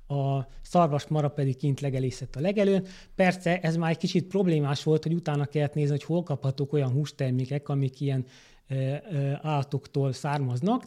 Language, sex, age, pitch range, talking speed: Hungarian, male, 30-49, 140-165 Hz, 150 wpm